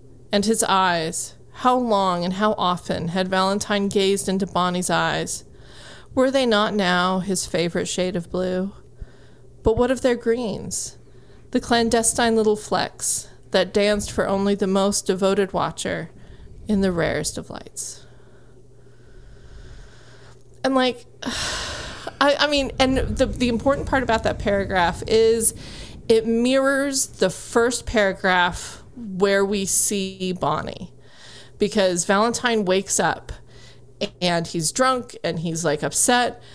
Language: English